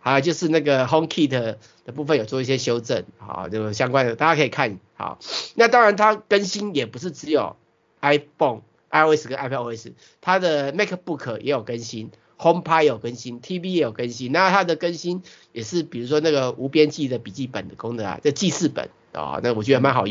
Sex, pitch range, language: male, 120-160 Hz, Chinese